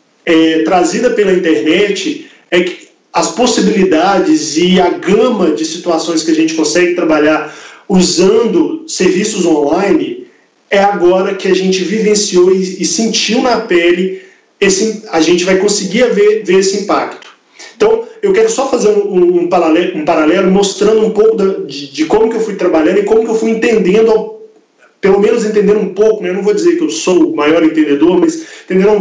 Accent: Brazilian